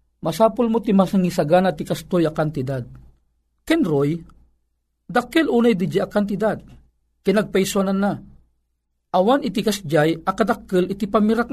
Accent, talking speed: native, 115 wpm